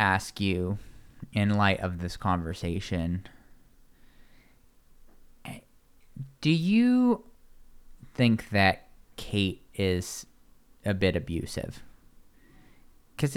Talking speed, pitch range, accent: 75 wpm, 95-130 Hz, American